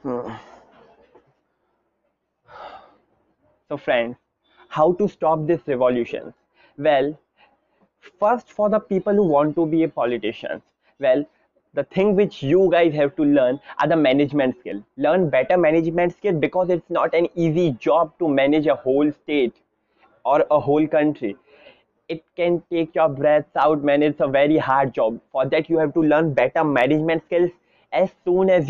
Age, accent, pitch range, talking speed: 20-39, native, 150-185 Hz, 155 wpm